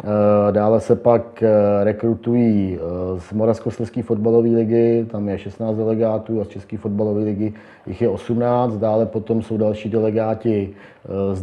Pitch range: 105-115 Hz